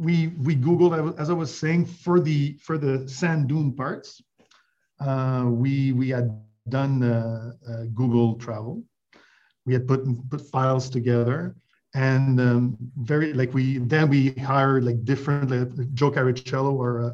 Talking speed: 155 wpm